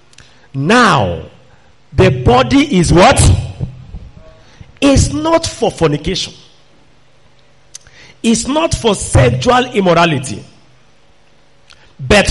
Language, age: English, 50-69